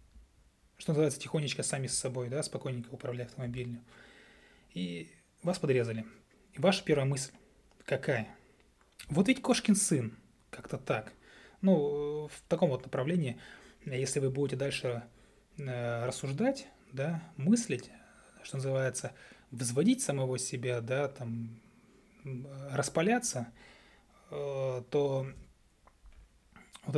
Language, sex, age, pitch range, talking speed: Russian, male, 20-39, 120-145 Hz, 105 wpm